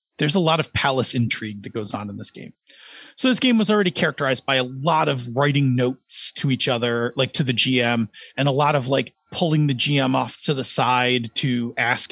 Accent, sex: American, male